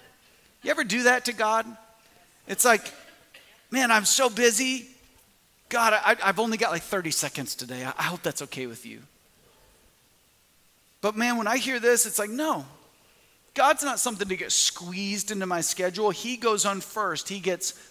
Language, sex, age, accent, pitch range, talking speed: English, male, 40-59, American, 175-230 Hz, 170 wpm